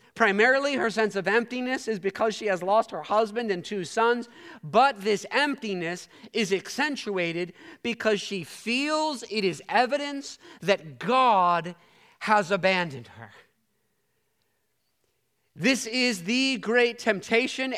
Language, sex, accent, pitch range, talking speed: English, male, American, 205-260 Hz, 120 wpm